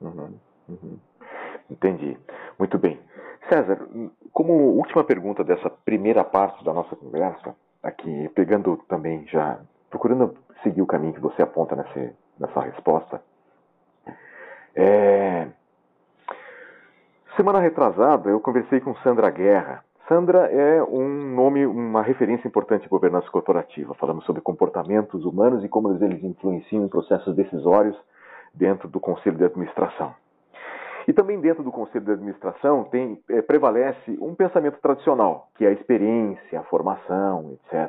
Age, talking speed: 40-59, 130 wpm